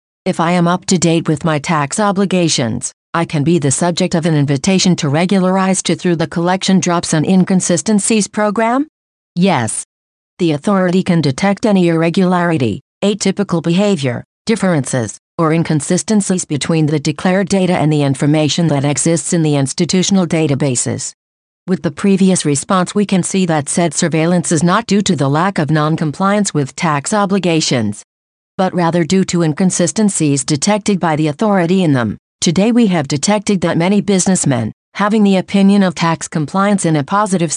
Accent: American